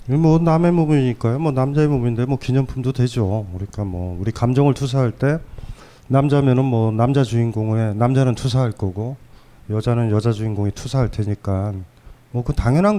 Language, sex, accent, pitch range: Korean, male, native, 115-145 Hz